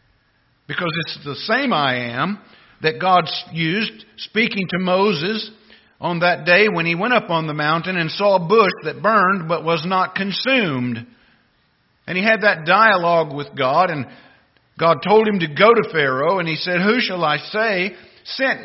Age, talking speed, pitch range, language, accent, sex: 50-69, 175 wpm, 145-205 Hz, English, American, male